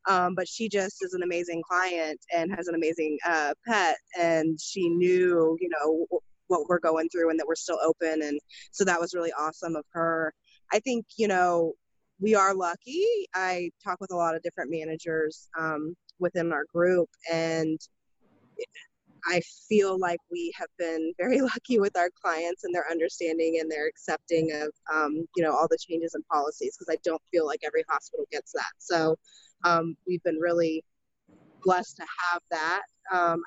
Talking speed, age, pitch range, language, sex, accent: 180 wpm, 20-39, 160-185 Hz, English, female, American